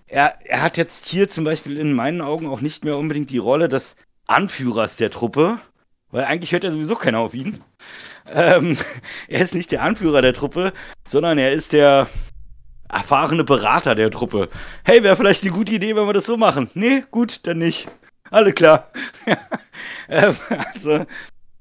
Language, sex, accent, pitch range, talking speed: German, male, German, 125-170 Hz, 170 wpm